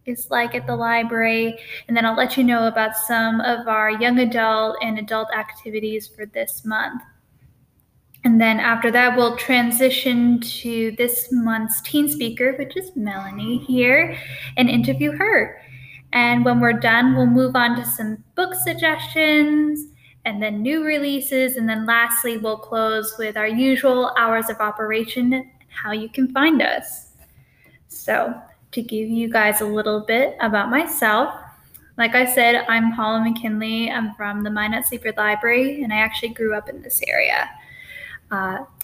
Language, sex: English, female